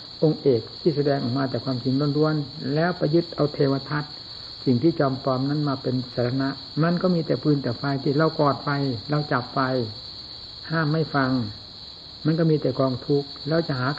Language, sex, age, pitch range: Thai, male, 60-79, 120-150 Hz